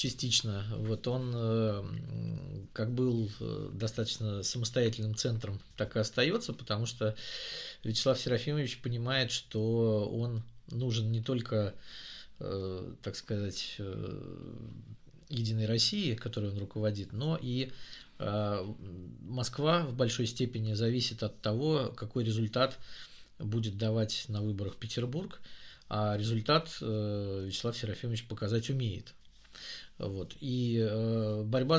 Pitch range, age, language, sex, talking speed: 105-130 Hz, 20-39, Russian, male, 100 wpm